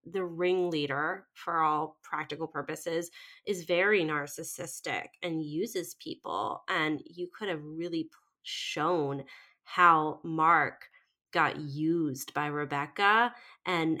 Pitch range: 155-185 Hz